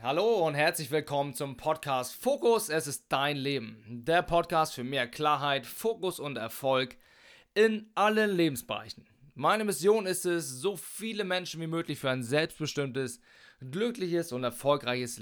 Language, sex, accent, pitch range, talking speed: German, male, German, 130-165 Hz, 145 wpm